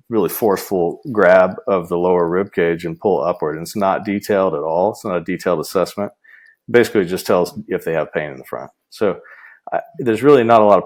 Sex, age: male, 40-59